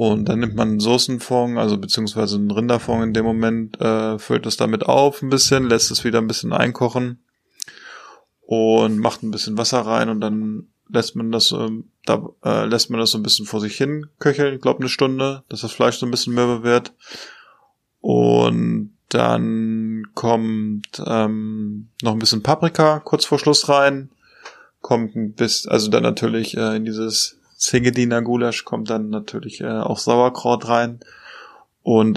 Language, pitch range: German, 110-135 Hz